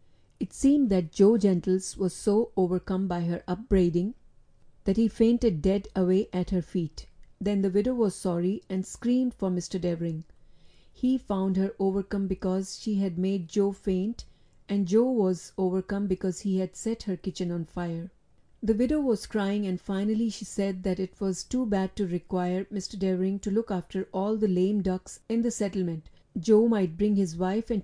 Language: English